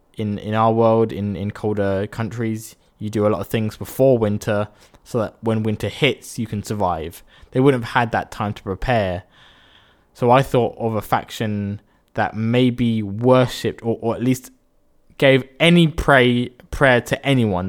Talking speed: 175 wpm